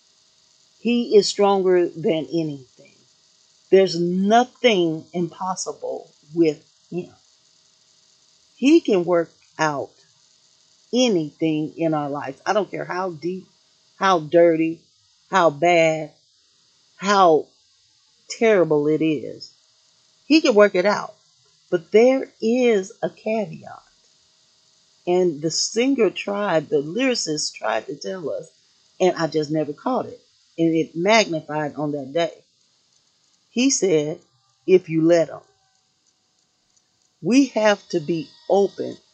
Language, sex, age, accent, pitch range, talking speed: English, female, 40-59, American, 150-195 Hz, 115 wpm